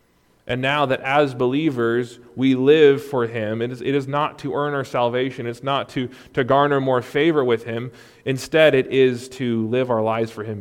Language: English